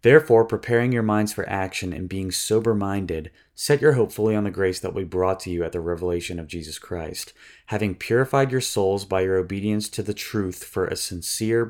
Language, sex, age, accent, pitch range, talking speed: English, male, 20-39, American, 90-110 Hz, 205 wpm